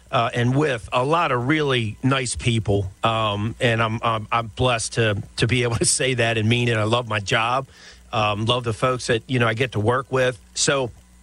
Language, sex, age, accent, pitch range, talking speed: English, male, 40-59, American, 110-135 Hz, 225 wpm